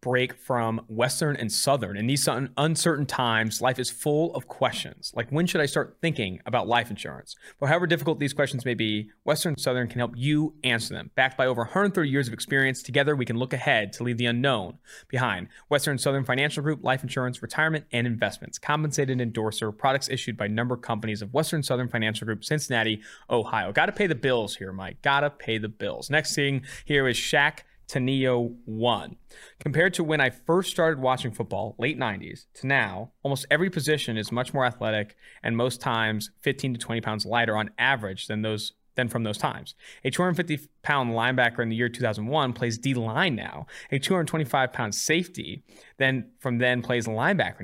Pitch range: 115-145 Hz